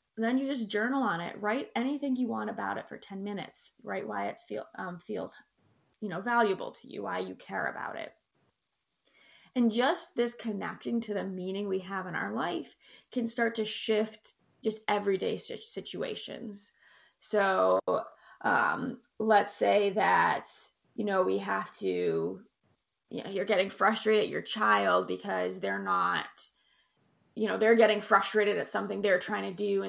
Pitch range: 195-235 Hz